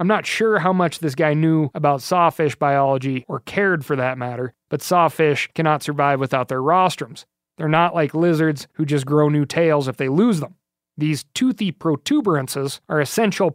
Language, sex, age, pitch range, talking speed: English, male, 30-49, 140-170 Hz, 180 wpm